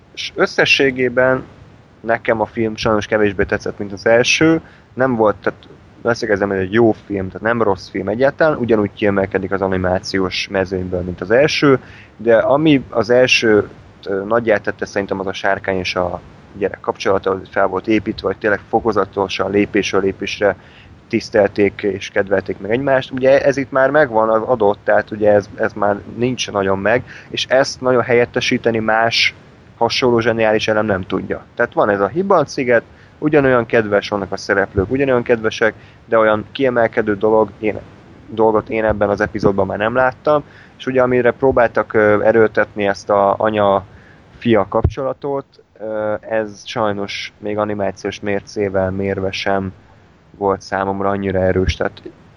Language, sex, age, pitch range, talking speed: Hungarian, male, 20-39, 100-115 Hz, 150 wpm